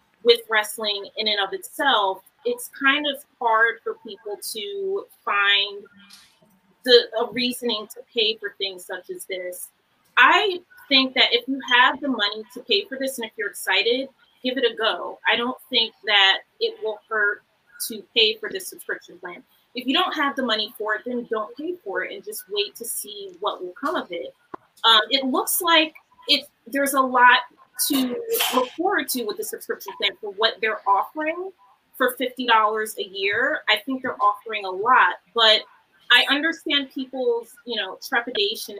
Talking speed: 180 wpm